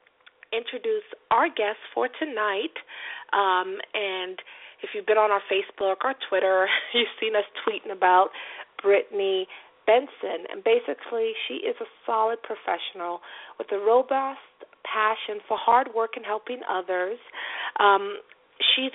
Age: 40-59